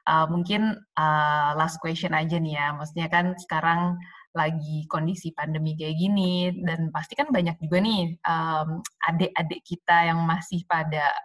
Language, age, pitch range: Indonesian, 20-39, 160-180 Hz